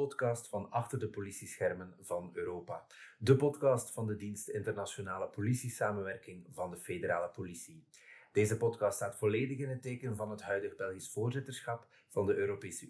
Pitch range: 100-130 Hz